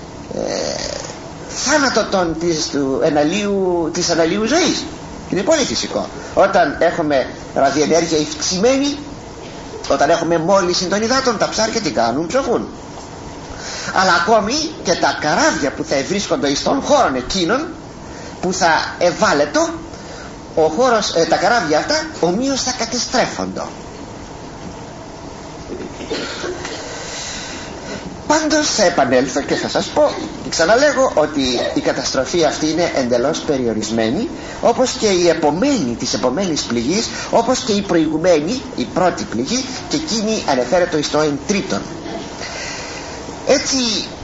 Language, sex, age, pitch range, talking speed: Greek, male, 50-69, 165-250 Hz, 115 wpm